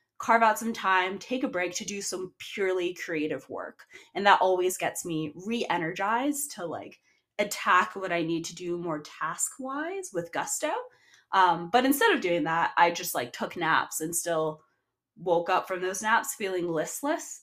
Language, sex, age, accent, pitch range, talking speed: English, female, 20-39, American, 165-215 Hz, 175 wpm